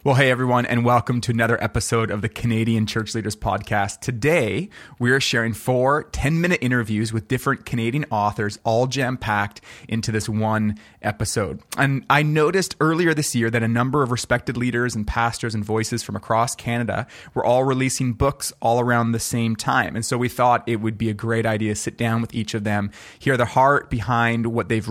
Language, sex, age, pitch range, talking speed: English, male, 30-49, 110-130 Hz, 195 wpm